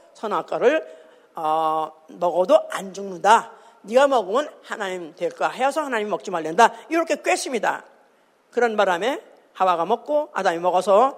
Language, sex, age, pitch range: Korean, female, 50-69, 205-340 Hz